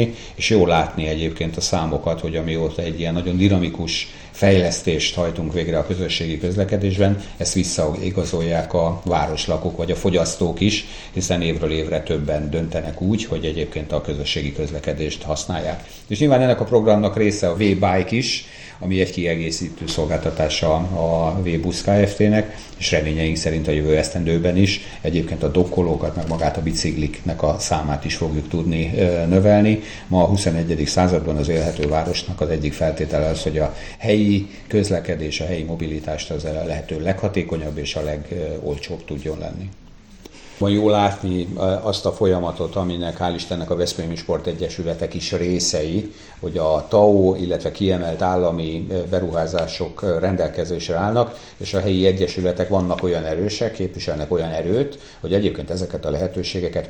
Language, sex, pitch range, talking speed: Hungarian, male, 80-95 Hz, 150 wpm